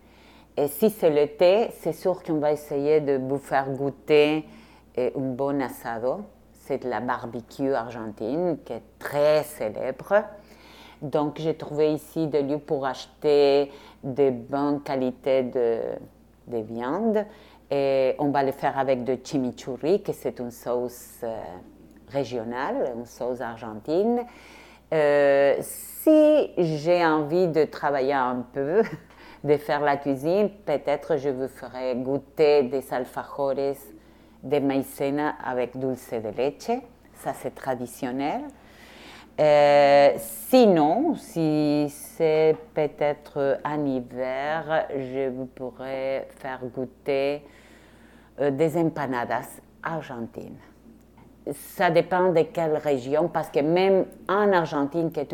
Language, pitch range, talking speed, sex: French, 130-155 Hz, 120 wpm, female